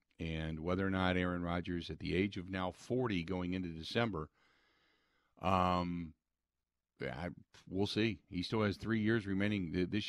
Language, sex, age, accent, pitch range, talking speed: English, male, 50-69, American, 90-110 Hz, 155 wpm